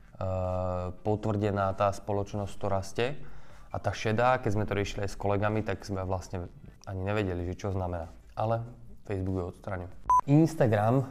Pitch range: 95-110 Hz